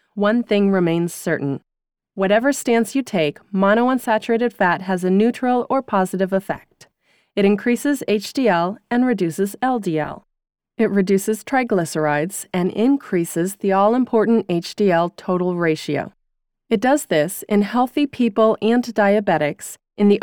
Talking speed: 125 wpm